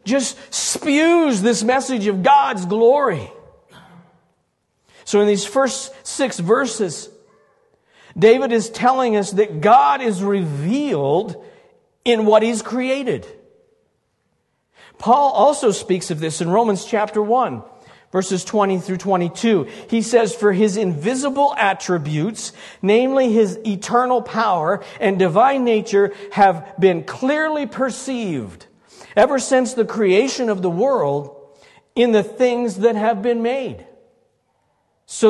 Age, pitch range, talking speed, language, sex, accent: 50-69, 190-245 Hz, 120 wpm, English, male, American